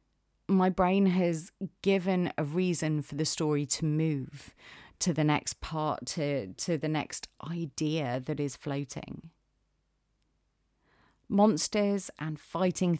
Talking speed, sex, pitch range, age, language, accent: 120 wpm, female, 150-185 Hz, 30-49, English, British